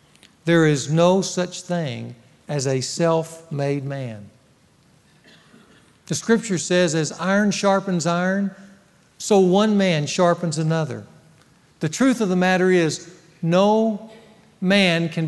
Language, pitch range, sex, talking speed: English, 160-210 Hz, male, 120 wpm